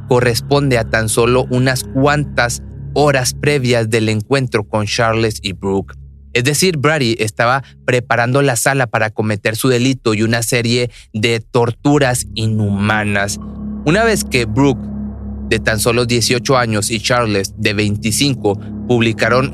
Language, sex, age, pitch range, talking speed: Spanish, male, 30-49, 105-125 Hz, 140 wpm